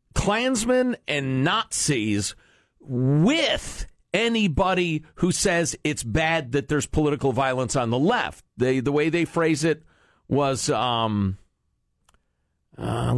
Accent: American